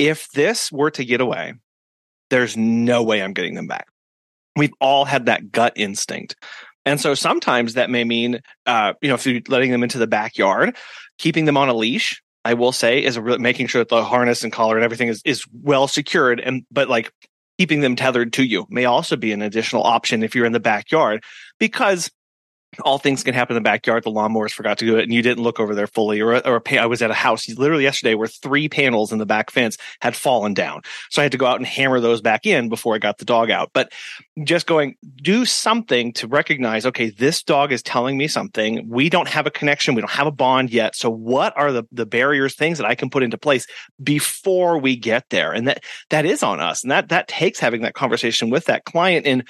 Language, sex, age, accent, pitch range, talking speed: English, male, 30-49, American, 115-140 Hz, 235 wpm